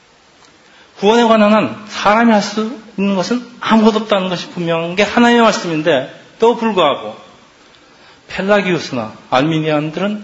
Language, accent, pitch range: Korean, native, 155-210 Hz